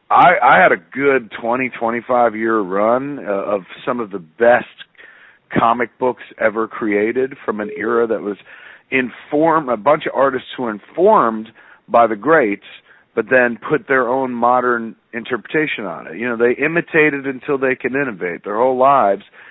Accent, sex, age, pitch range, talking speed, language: American, male, 40-59, 100-125 Hz, 170 wpm, English